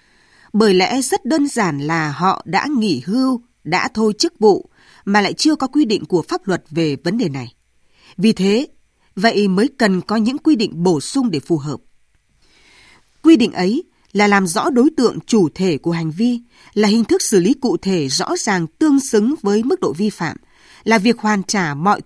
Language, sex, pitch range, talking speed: Vietnamese, female, 180-255 Hz, 205 wpm